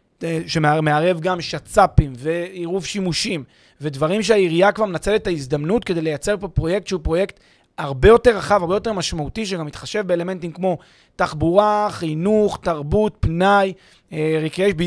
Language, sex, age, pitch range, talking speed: Hebrew, male, 30-49, 160-205 Hz, 130 wpm